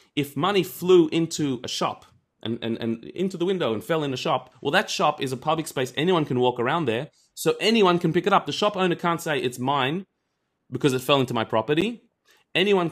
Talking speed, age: 230 wpm, 30-49